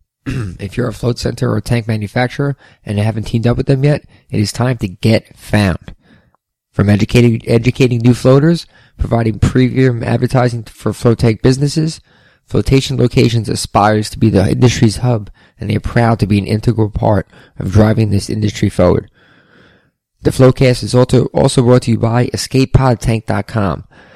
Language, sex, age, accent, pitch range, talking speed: English, male, 20-39, American, 105-125 Hz, 160 wpm